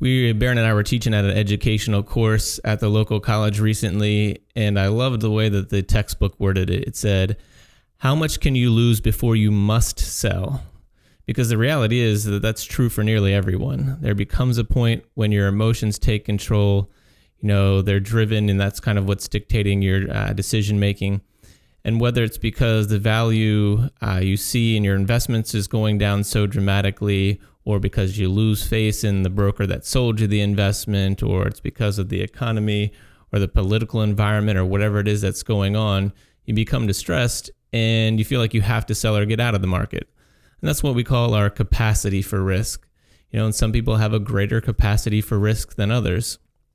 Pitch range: 100-115 Hz